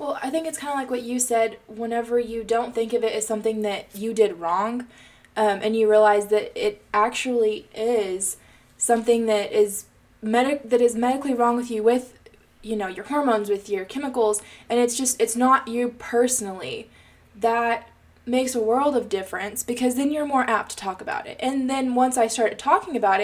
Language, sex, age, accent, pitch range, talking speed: English, female, 20-39, American, 220-270 Hz, 195 wpm